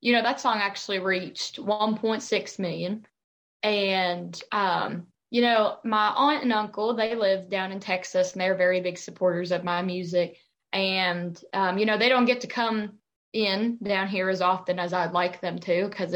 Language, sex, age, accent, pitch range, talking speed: English, female, 20-39, American, 180-215 Hz, 180 wpm